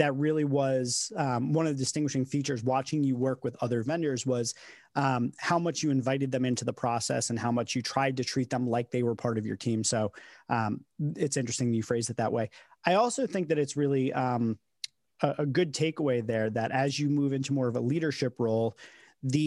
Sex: male